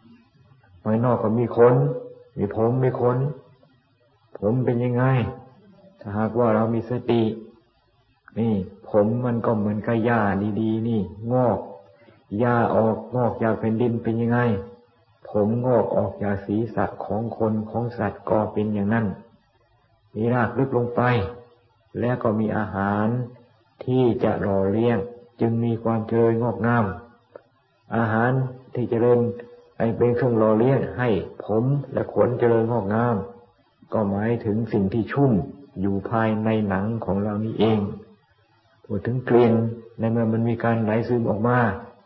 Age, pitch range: 60-79, 110-120 Hz